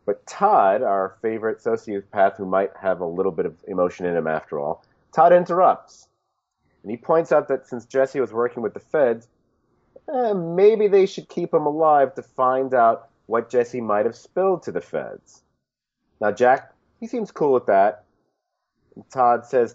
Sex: male